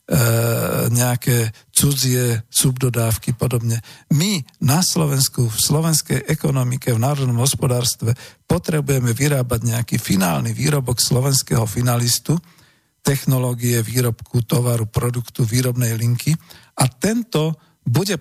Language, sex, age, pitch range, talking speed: Slovak, male, 50-69, 120-145 Hz, 95 wpm